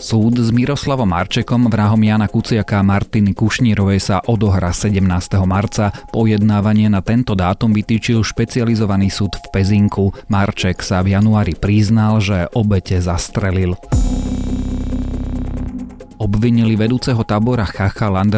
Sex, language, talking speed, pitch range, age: male, Slovak, 110 wpm, 95-110 Hz, 30-49